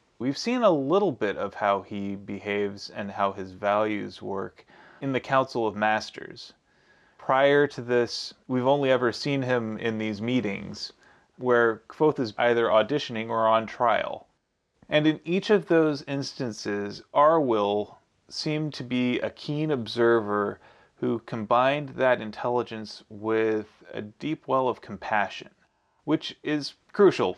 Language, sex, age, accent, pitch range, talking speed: English, male, 30-49, American, 110-135 Hz, 140 wpm